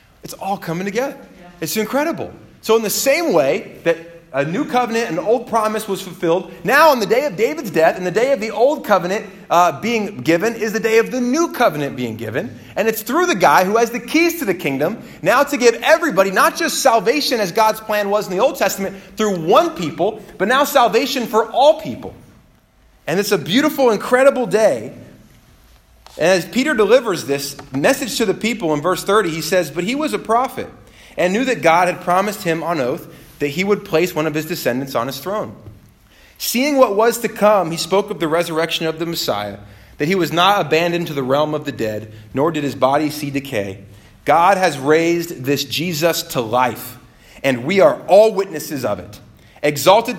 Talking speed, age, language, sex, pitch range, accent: 205 wpm, 30-49, English, male, 155-235 Hz, American